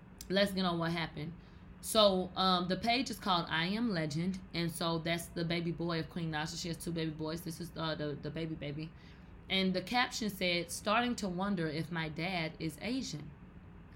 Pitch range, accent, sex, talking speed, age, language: 160-215 Hz, American, female, 200 wpm, 20-39, English